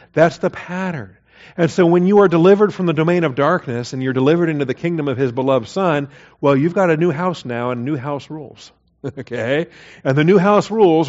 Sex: male